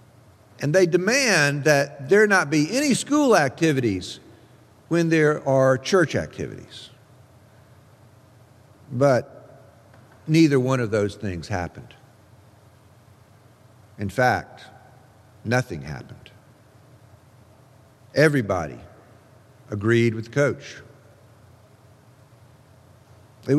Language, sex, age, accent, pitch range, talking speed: English, male, 50-69, American, 110-140 Hz, 80 wpm